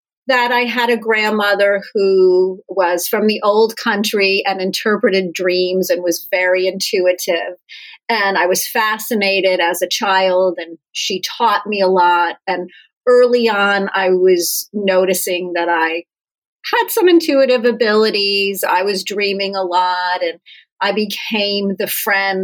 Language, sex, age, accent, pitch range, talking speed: English, female, 40-59, American, 180-215 Hz, 140 wpm